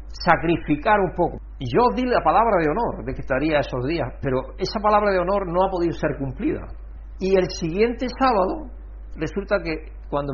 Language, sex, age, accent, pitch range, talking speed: Spanish, male, 60-79, Spanish, 120-180 Hz, 190 wpm